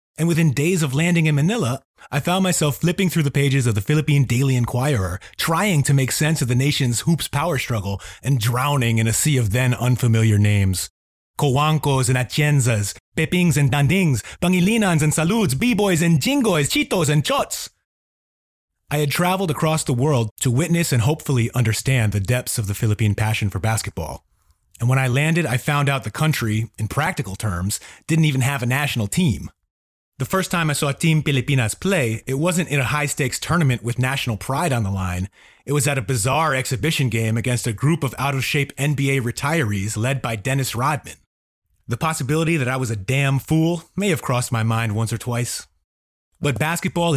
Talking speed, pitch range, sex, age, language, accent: 185 wpm, 115-155 Hz, male, 30-49, English, American